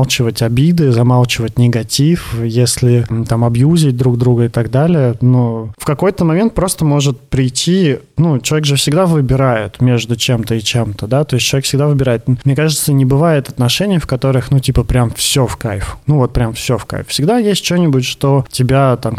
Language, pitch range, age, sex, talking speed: Russian, 125-145 Hz, 20-39, male, 180 wpm